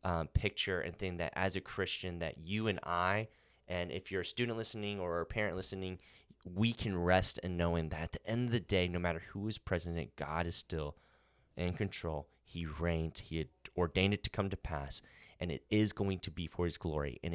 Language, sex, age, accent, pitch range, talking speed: English, male, 20-39, American, 85-105 Hz, 220 wpm